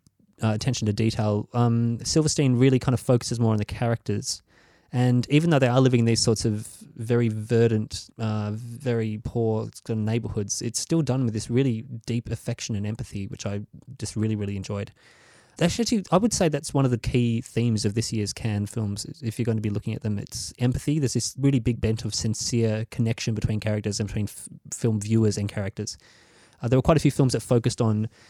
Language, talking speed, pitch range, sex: English, 210 wpm, 110-120 Hz, male